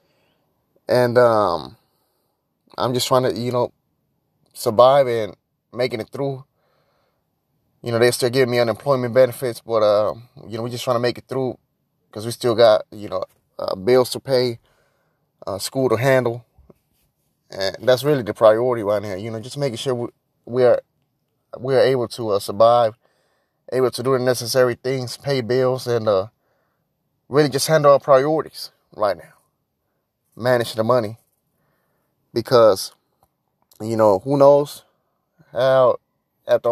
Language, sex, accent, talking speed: English, male, American, 155 wpm